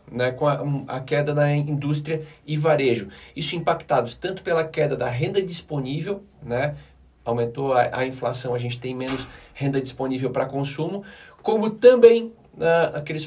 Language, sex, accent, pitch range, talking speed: Portuguese, male, Brazilian, 135-170 Hz, 155 wpm